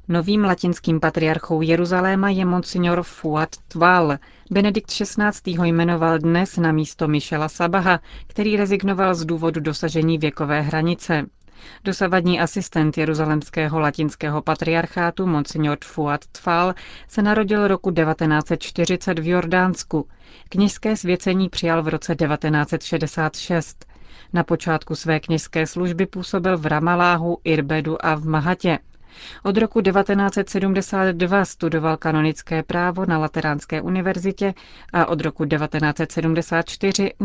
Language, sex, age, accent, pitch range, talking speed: Czech, female, 30-49, native, 155-185 Hz, 110 wpm